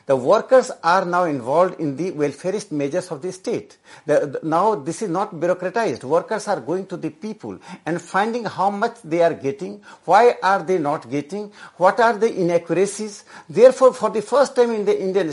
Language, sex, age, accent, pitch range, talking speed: English, male, 60-79, Indian, 170-220 Hz, 190 wpm